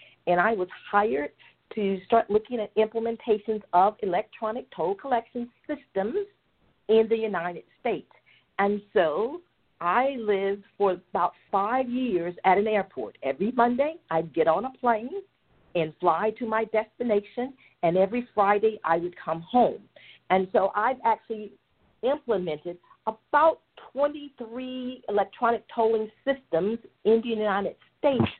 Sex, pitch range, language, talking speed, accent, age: female, 195-240 Hz, English, 135 wpm, American, 50-69